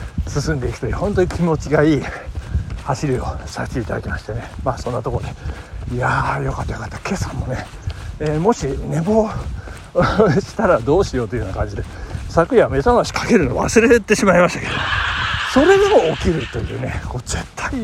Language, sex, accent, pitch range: Japanese, male, native, 115-180 Hz